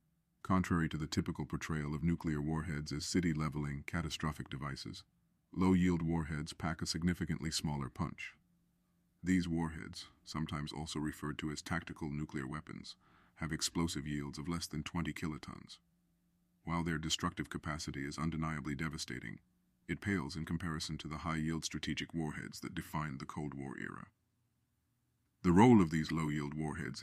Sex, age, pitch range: male, 40-59, 75-90 Hz